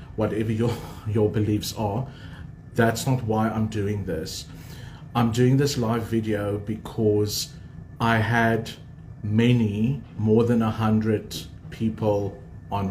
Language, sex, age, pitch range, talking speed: English, male, 40-59, 100-115 Hz, 120 wpm